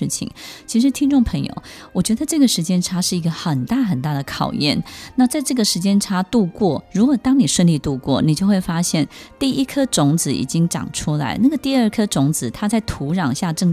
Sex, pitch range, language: female, 150-205 Hz, Chinese